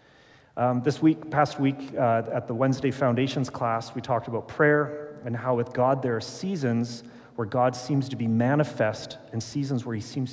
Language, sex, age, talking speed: English, male, 30-49, 190 wpm